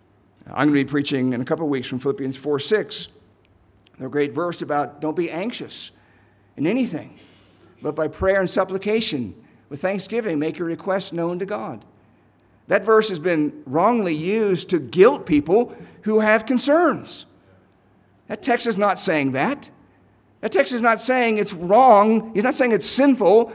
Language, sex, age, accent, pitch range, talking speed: English, male, 50-69, American, 130-210 Hz, 170 wpm